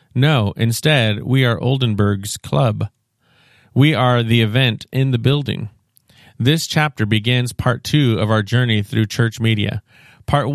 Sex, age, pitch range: male, 40-59, 110-135 Hz